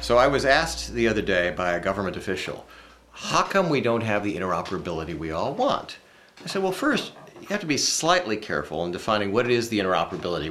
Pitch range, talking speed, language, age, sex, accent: 95-130 Hz, 215 wpm, English, 40-59, male, American